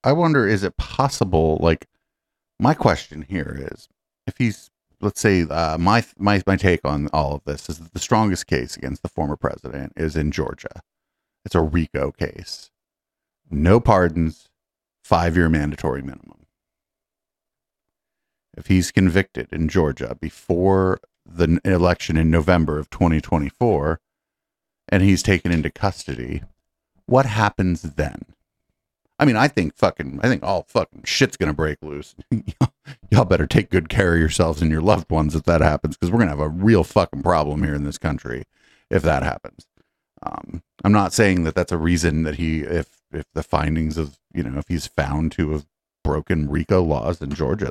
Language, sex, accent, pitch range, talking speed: English, male, American, 80-95 Hz, 170 wpm